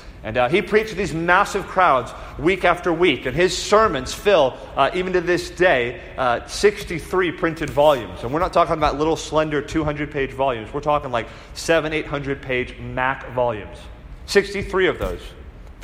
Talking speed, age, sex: 165 wpm, 30-49, male